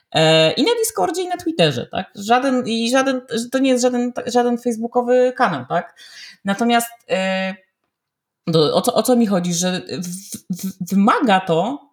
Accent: native